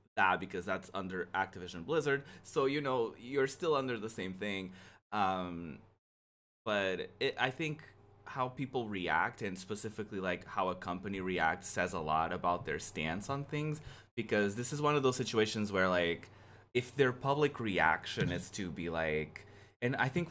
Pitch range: 90-110 Hz